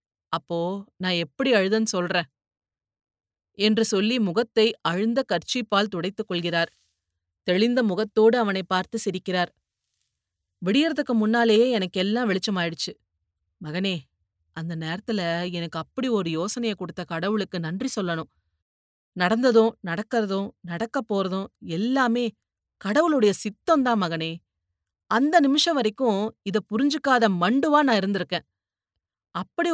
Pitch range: 170-230 Hz